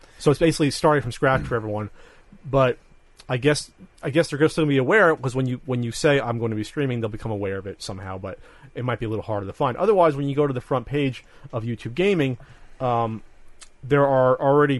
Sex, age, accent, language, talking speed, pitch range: male, 30-49, American, English, 240 wpm, 110-140 Hz